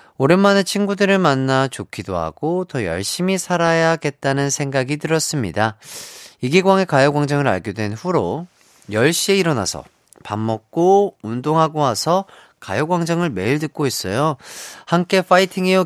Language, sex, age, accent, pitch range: Korean, male, 30-49, native, 110-170 Hz